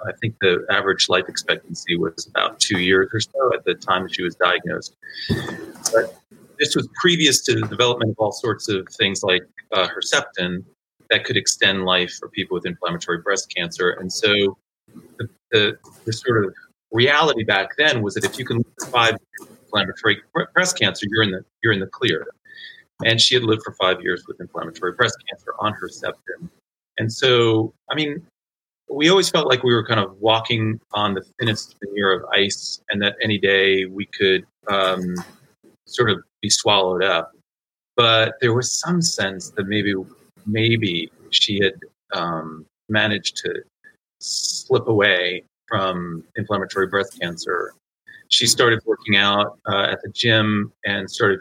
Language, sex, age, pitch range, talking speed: English, male, 40-59, 95-120 Hz, 170 wpm